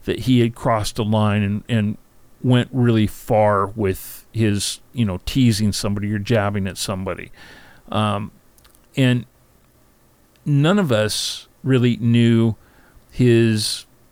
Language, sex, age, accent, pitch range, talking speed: English, male, 50-69, American, 105-125 Hz, 125 wpm